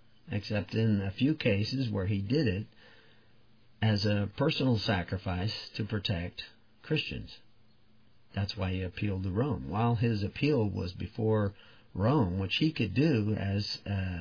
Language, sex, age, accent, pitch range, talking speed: English, male, 50-69, American, 100-115 Hz, 140 wpm